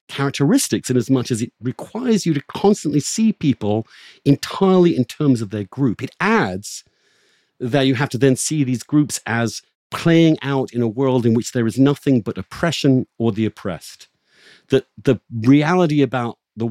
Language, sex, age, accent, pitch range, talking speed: English, male, 50-69, British, 115-150 Hz, 175 wpm